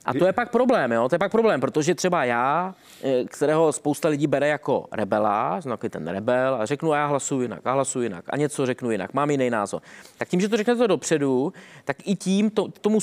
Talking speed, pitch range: 225 wpm, 135-175 Hz